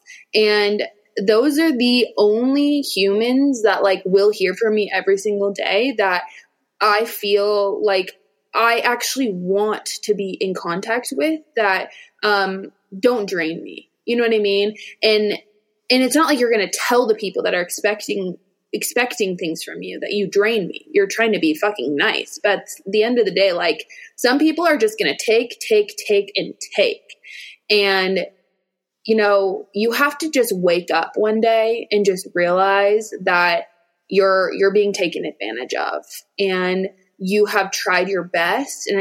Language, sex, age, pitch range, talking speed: English, female, 20-39, 190-225 Hz, 170 wpm